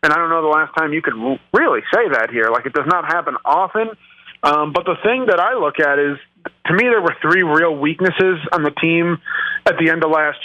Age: 30-49